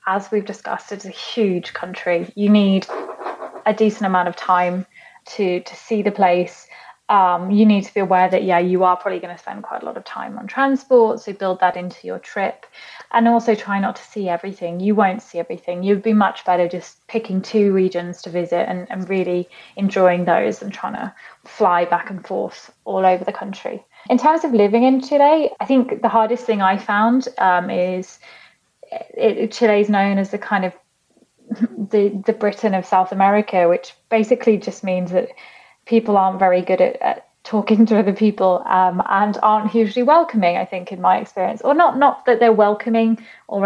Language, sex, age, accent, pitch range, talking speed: English, female, 20-39, British, 185-225 Hz, 195 wpm